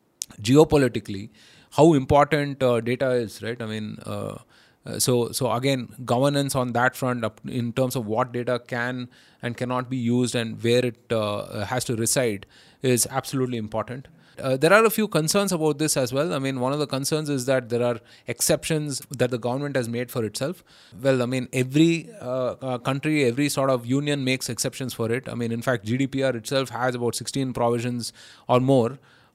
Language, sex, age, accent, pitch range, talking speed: English, male, 30-49, Indian, 115-135 Hz, 185 wpm